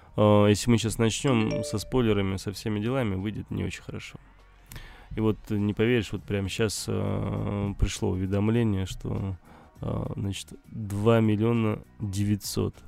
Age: 20-39